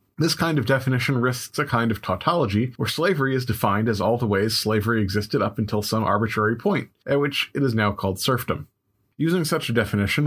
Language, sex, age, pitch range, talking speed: English, male, 30-49, 100-125 Hz, 205 wpm